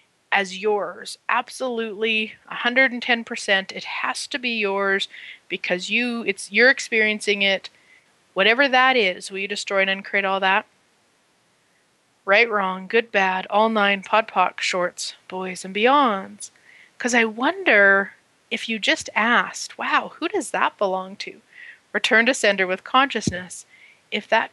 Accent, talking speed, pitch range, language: American, 135 wpm, 190-225 Hz, English